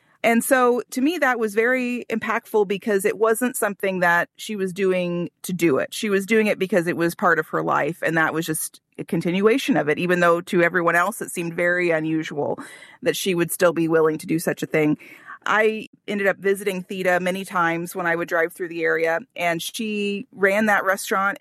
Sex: female